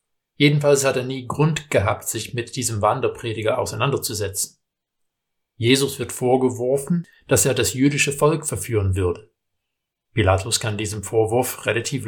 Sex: male